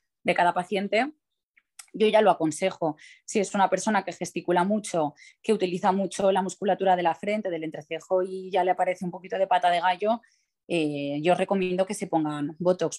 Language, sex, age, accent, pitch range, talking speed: Spanish, female, 20-39, Spanish, 160-190 Hz, 190 wpm